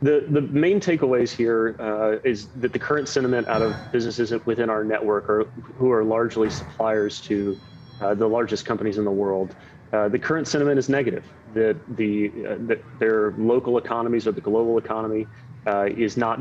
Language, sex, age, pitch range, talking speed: English, male, 30-49, 105-120 Hz, 185 wpm